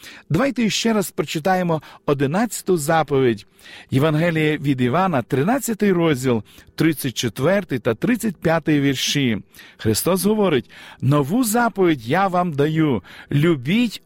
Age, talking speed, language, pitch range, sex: 50-69, 100 wpm, Ukrainian, 150-205 Hz, male